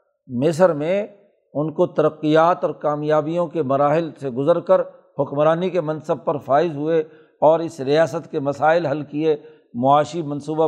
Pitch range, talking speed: 145-175 Hz, 150 wpm